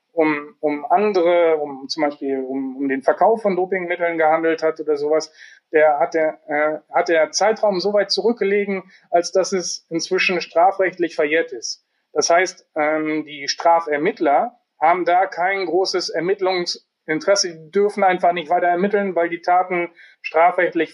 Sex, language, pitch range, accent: male, German, 155-195 Hz, German